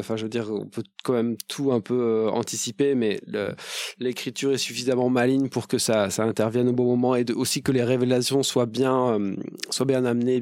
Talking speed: 225 wpm